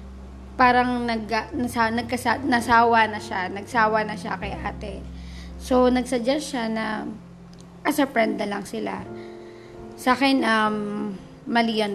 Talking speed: 120 wpm